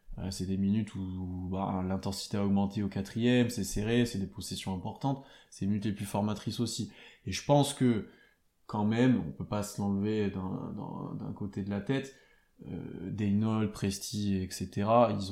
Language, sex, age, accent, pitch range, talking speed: French, male, 20-39, French, 100-115 Hz, 185 wpm